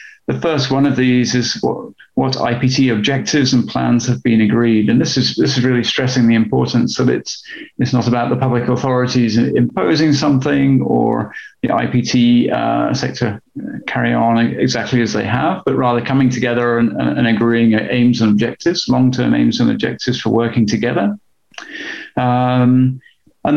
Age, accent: 40-59, British